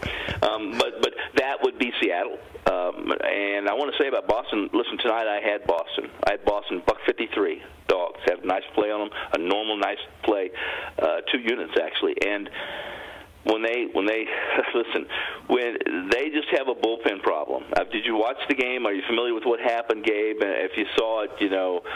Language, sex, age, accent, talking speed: English, male, 50-69, American, 195 wpm